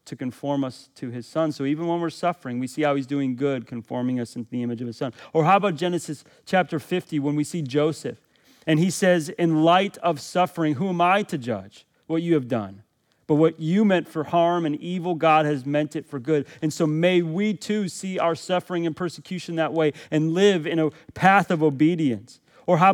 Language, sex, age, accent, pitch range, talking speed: English, male, 30-49, American, 140-175 Hz, 225 wpm